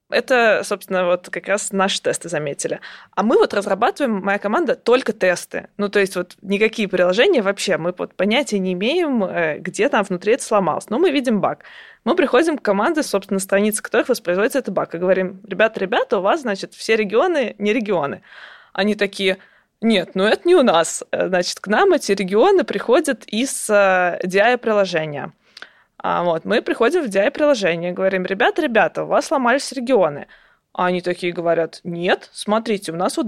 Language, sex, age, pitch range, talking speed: Russian, female, 20-39, 185-225 Hz, 175 wpm